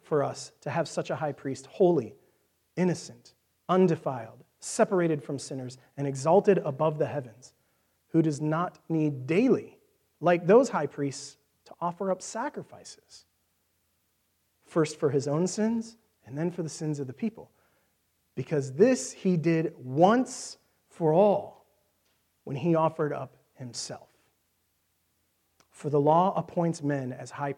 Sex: male